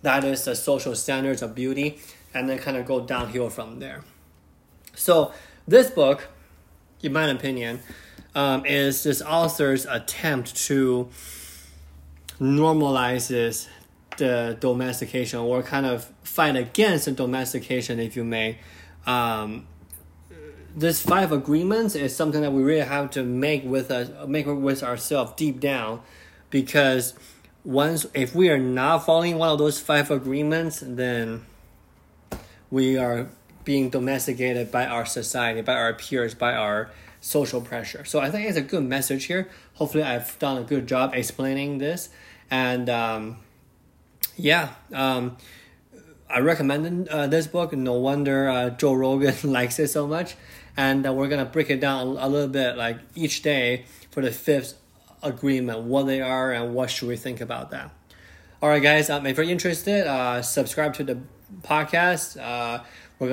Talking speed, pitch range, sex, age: 150 wpm, 120-145 Hz, male, 20-39